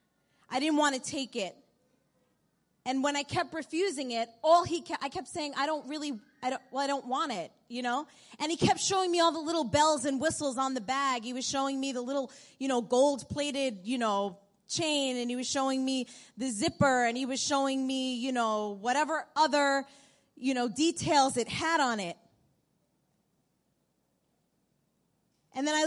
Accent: American